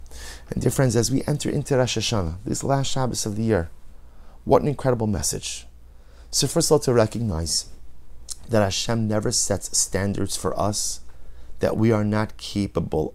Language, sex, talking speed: English, male, 170 wpm